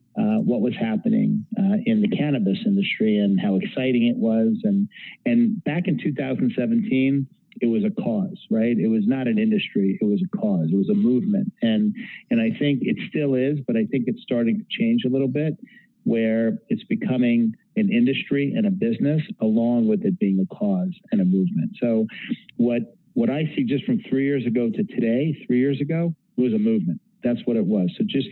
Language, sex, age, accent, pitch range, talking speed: English, male, 50-69, American, 145-220 Hz, 205 wpm